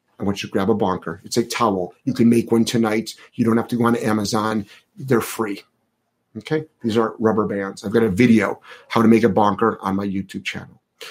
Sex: male